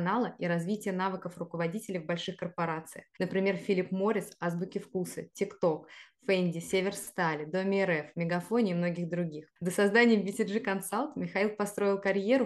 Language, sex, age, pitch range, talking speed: Russian, female, 20-39, 170-200 Hz, 135 wpm